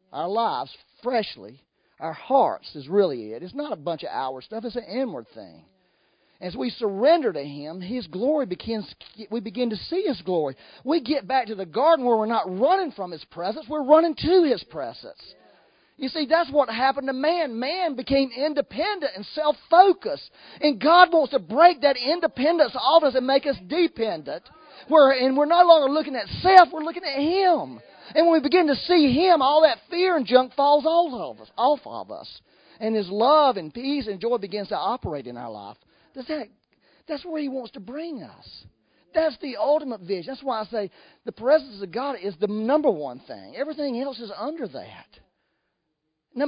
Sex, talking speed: male, 195 wpm